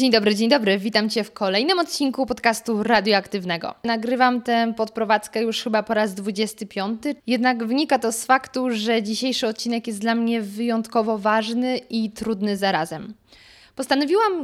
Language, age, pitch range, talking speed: Polish, 20-39, 220-260 Hz, 150 wpm